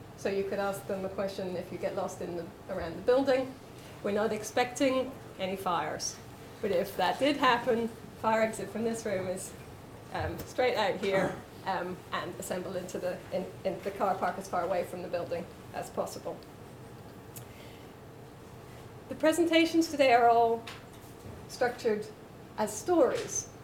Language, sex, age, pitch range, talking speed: English, female, 30-49, 190-245 Hz, 155 wpm